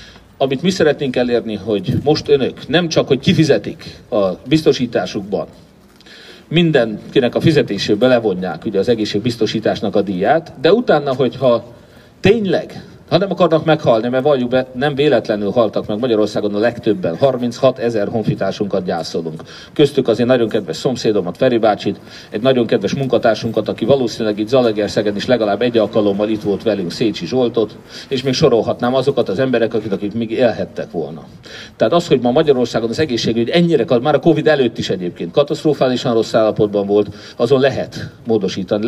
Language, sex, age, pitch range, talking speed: Hungarian, male, 40-59, 110-150 Hz, 155 wpm